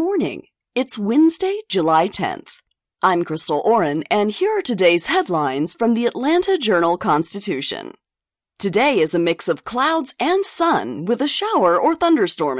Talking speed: 145 wpm